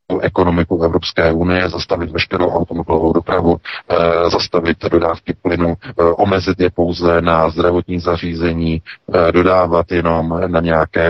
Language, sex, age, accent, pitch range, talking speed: Czech, male, 40-59, native, 85-95 Hz, 125 wpm